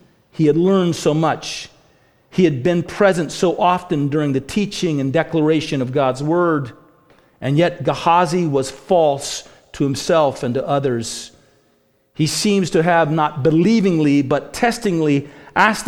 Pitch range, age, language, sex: 160-220 Hz, 50-69, English, male